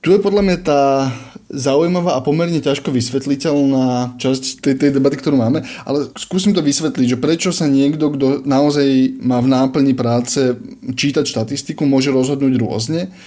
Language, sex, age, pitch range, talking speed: Slovak, male, 20-39, 130-155 Hz, 160 wpm